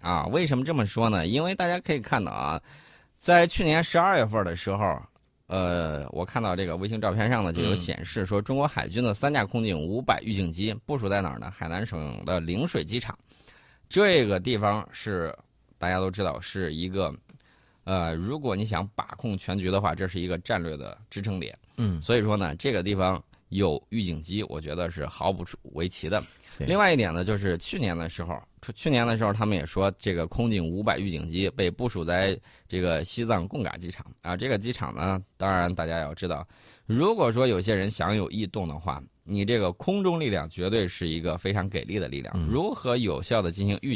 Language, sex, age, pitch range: Chinese, male, 20-39, 90-115 Hz